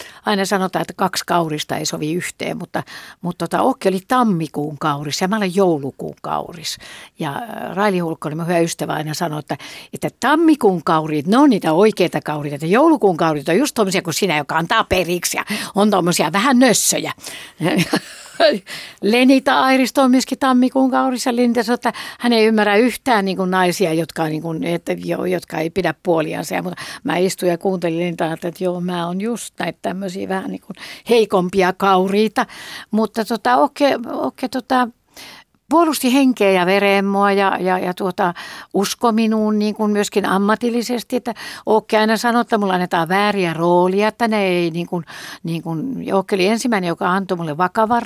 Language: Finnish